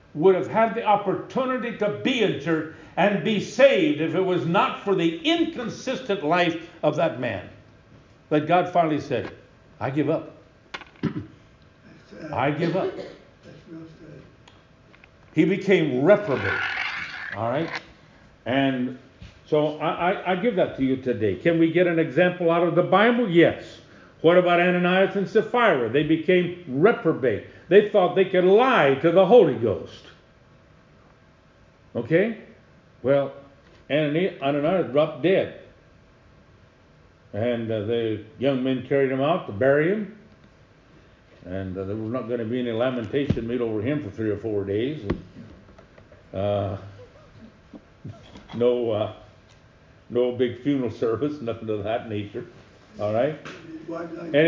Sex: male